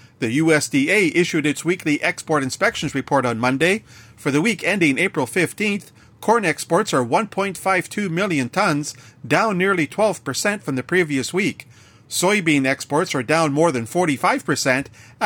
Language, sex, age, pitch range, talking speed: English, male, 40-59, 130-180 Hz, 140 wpm